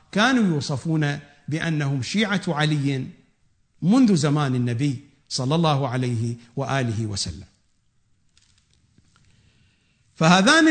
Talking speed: 80 wpm